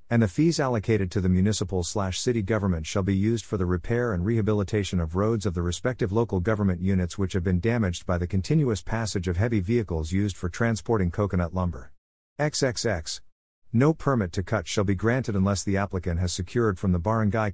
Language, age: English, 50-69